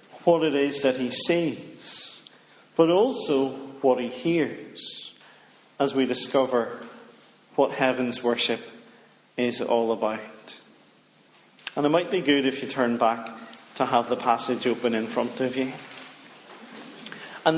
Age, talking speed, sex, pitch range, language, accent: 40-59, 135 wpm, male, 125-160 Hz, English, British